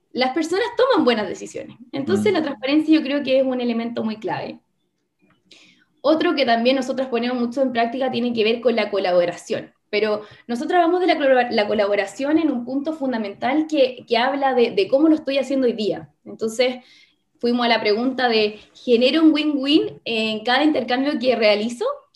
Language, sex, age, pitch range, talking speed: Spanish, female, 20-39, 220-285 Hz, 175 wpm